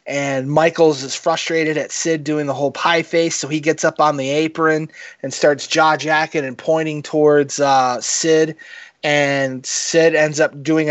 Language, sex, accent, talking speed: English, male, American, 175 wpm